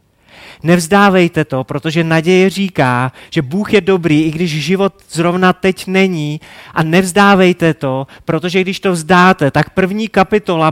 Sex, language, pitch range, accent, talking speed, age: male, Czech, 130-185 Hz, native, 140 wpm, 30-49